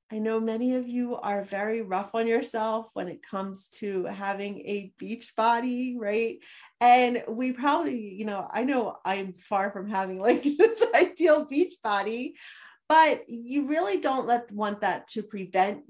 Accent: American